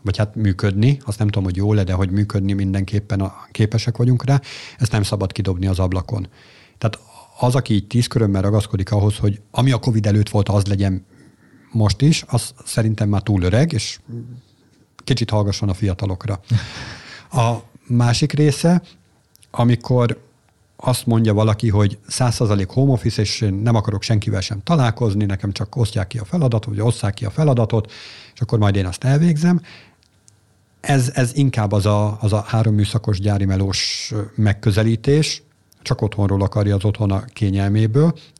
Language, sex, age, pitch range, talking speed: Hungarian, male, 50-69, 105-125 Hz, 165 wpm